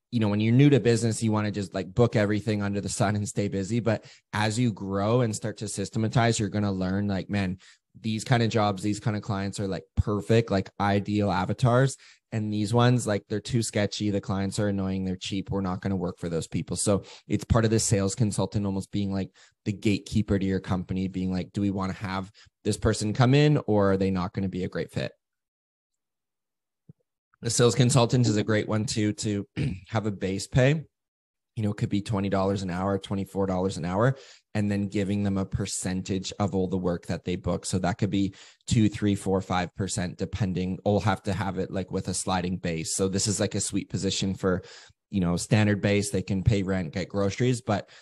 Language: English